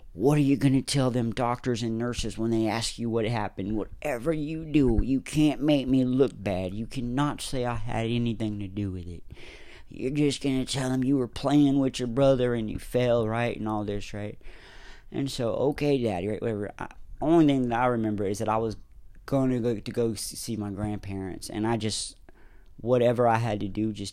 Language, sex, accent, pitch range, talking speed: English, male, American, 100-125 Hz, 215 wpm